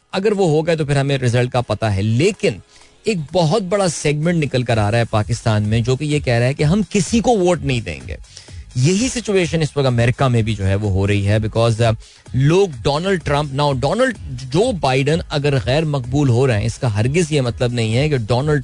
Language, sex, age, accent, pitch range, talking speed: Hindi, male, 20-39, native, 115-155 Hz, 230 wpm